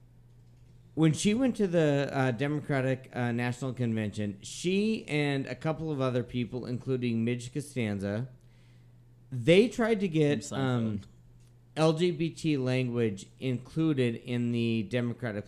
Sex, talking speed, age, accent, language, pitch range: male, 120 wpm, 40-59, American, English, 120-140 Hz